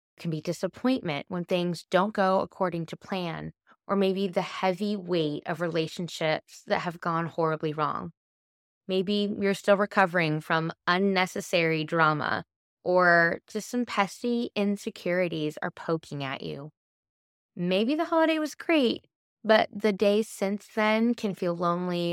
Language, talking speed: English, 140 wpm